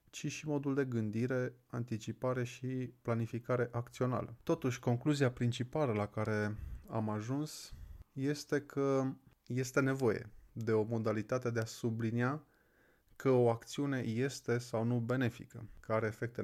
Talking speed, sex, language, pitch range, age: 130 wpm, male, Romanian, 115-135 Hz, 20-39